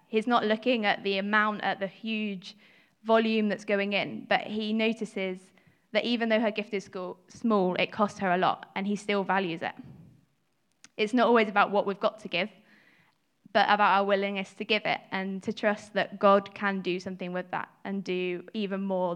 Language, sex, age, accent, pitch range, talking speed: English, female, 20-39, British, 190-215 Hz, 195 wpm